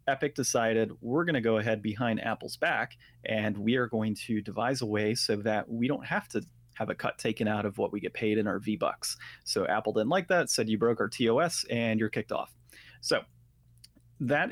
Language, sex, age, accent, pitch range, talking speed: English, male, 30-49, American, 110-130 Hz, 225 wpm